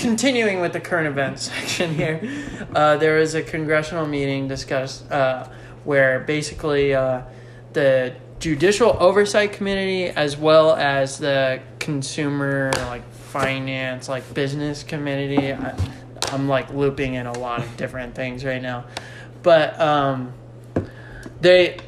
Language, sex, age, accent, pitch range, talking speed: English, male, 20-39, American, 125-155 Hz, 130 wpm